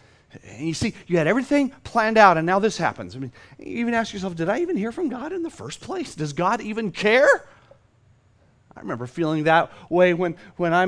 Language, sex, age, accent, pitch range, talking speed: English, male, 30-49, American, 135-205 Hz, 220 wpm